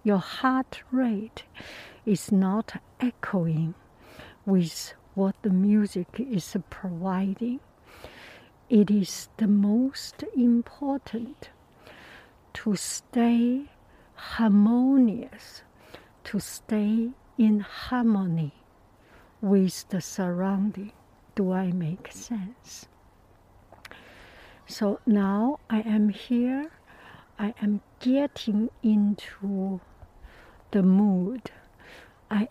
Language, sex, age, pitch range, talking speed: English, female, 60-79, 195-240 Hz, 80 wpm